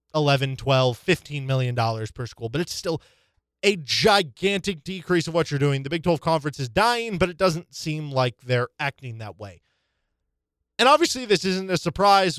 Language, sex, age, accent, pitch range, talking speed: English, male, 20-39, American, 120-160 Hz, 180 wpm